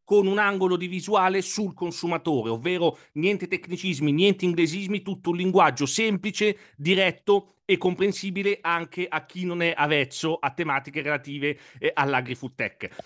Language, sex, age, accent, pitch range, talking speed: Italian, male, 40-59, native, 150-195 Hz, 140 wpm